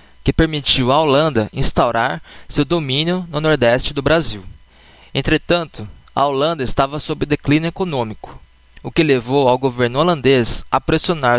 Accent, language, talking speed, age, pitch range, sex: Brazilian, Portuguese, 135 wpm, 20-39, 115-150 Hz, male